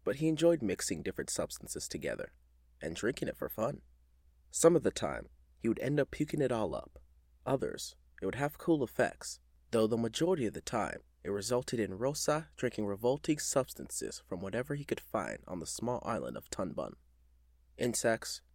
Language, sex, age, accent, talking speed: English, male, 20-39, American, 180 wpm